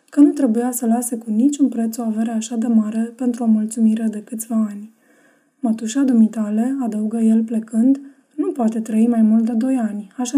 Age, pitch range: 20-39, 220-255 Hz